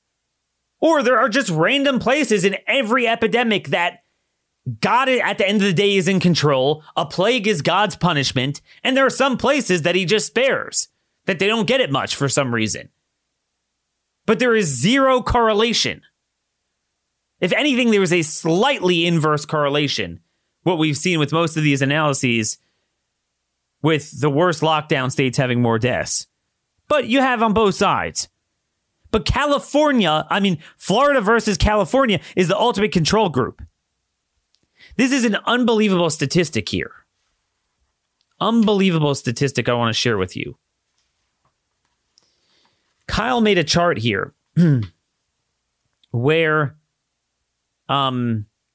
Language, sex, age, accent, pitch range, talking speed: English, male, 30-49, American, 145-215 Hz, 135 wpm